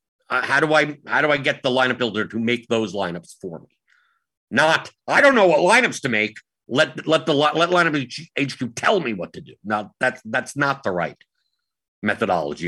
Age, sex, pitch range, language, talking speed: 50-69, male, 115-155 Hz, English, 205 wpm